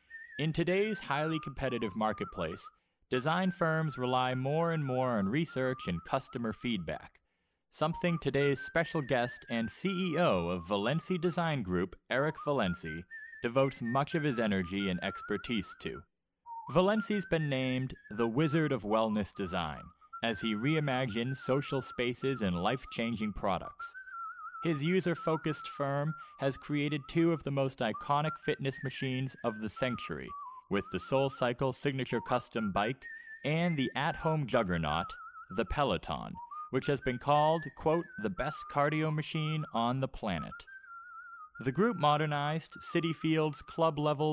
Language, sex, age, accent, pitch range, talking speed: English, male, 30-49, American, 120-170 Hz, 135 wpm